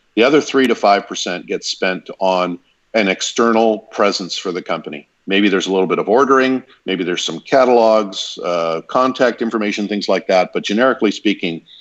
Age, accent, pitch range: 50-69, American, 90-115 Hz